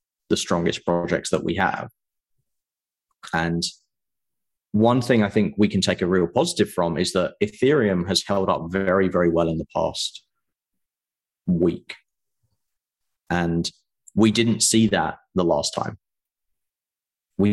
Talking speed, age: 135 wpm, 30-49